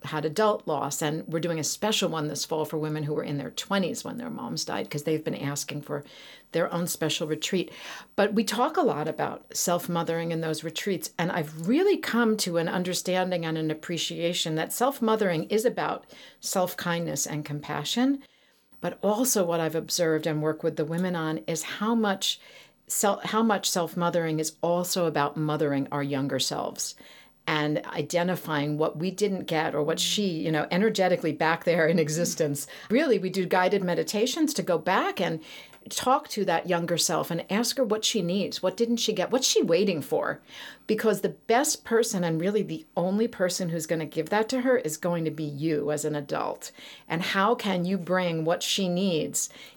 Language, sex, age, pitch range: English, female, 50-69, 160-210 Hz